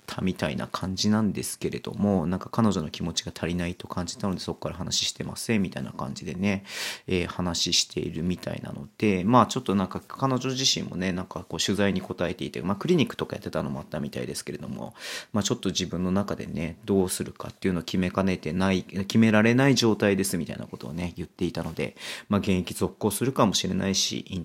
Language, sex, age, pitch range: Japanese, male, 30-49, 90-105 Hz